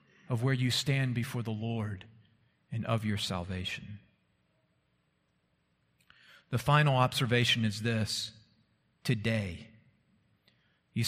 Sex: male